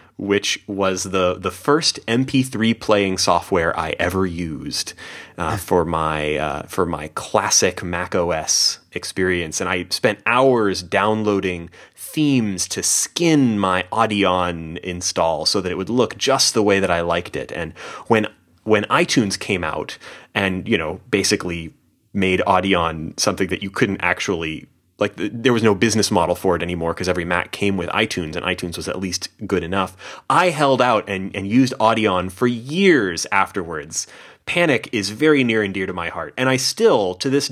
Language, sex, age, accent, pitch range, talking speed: English, male, 30-49, American, 90-115 Hz, 170 wpm